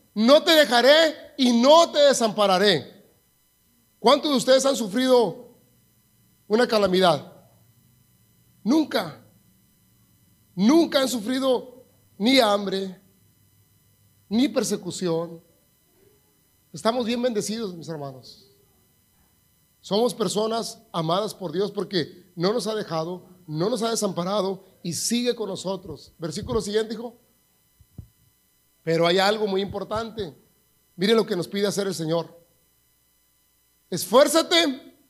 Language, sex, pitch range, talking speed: Spanish, male, 180-260 Hz, 105 wpm